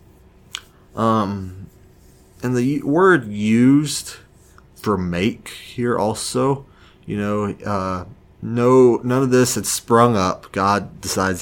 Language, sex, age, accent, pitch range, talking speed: English, male, 30-49, American, 95-110 Hz, 110 wpm